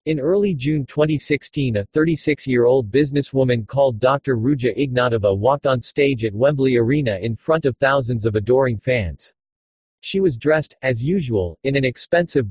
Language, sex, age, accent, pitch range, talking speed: English, male, 40-59, American, 120-150 Hz, 155 wpm